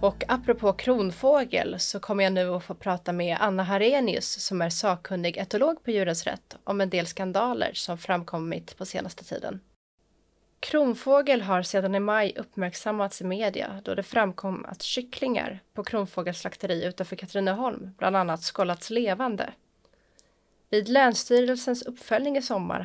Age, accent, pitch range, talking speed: 30-49, native, 185-240 Hz, 145 wpm